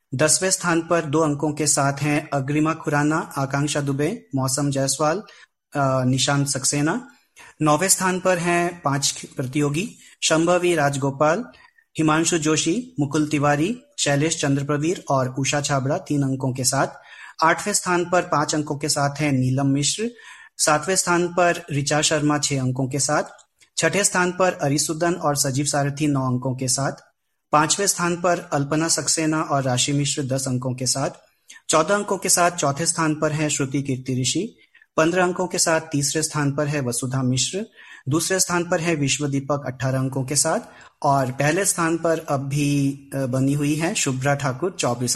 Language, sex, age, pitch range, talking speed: Hindi, male, 30-49, 140-165 Hz, 160 wpm